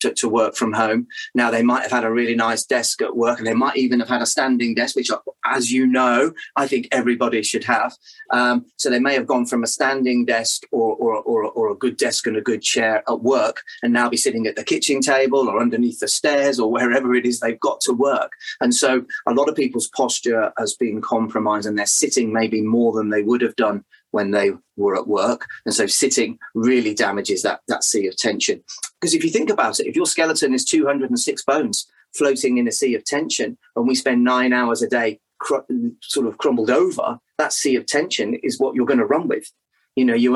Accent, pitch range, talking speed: British, 115-170 Hz, 230 wpm